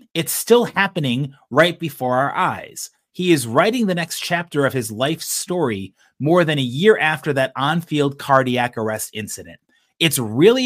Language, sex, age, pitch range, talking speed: English, male, 30-49, 135-180 Hz, 165 wpm